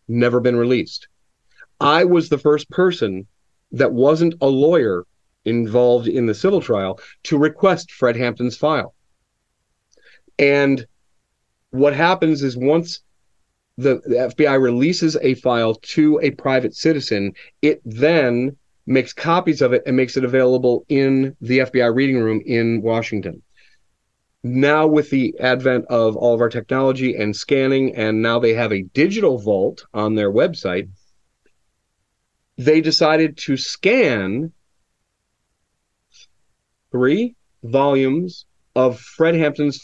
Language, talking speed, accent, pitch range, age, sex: English, 125 wpm, American, 110-150 Hz, 40-59, male